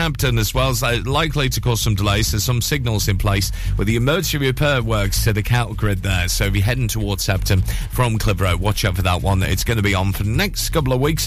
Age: 40-59